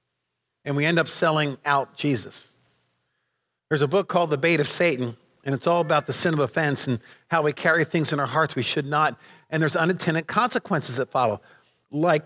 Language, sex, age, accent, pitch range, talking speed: English, male, 50-69, American, 135-205 Hz, 200 wpm